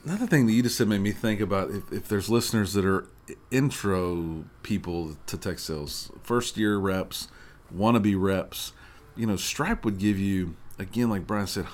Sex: male